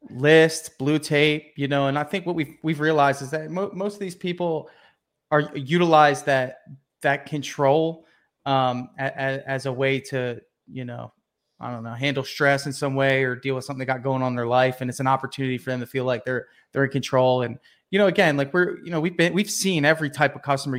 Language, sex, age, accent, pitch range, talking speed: English, male, 20-39, American, 130-155 Hz, 235 wpm